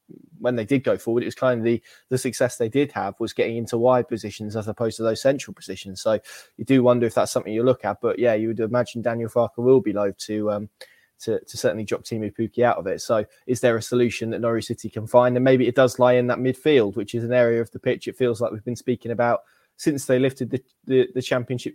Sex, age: male, 20-39